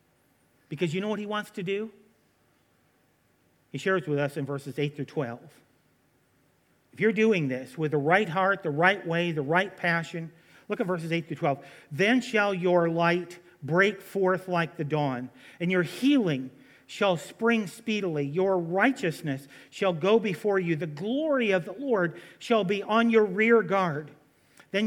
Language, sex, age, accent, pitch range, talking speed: English, male, 50-69, American, 150-195 Hz, 170 wpm